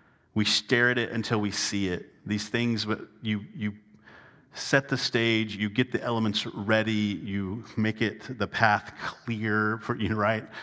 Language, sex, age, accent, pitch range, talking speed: English, male, 40-59, American, 105-135 Hz, 175 wpm